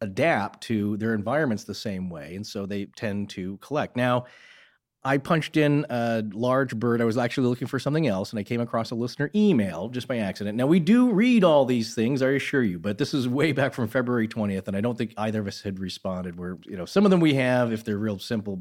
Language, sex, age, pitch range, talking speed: English, male, 40-59, 105-135 Hz, 245 wpm